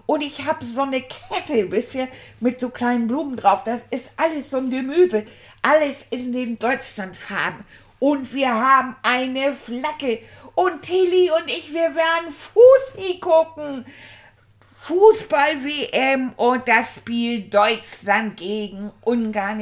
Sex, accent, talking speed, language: female, German, 130 wpm, German